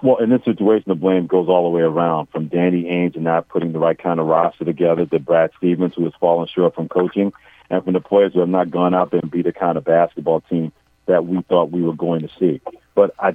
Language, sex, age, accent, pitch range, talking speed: English, male, 50-69, American, 85-100 Hz, 265 wpm